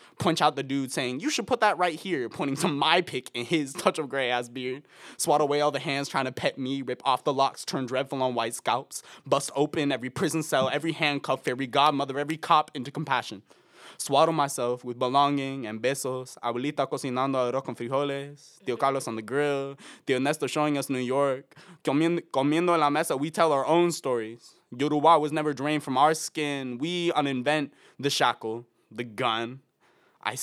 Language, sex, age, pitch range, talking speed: English, male, 20-39, 125-150 Hz, 195 wpm